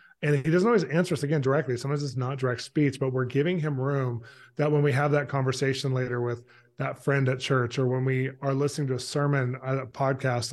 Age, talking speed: 20-39, 230 wpm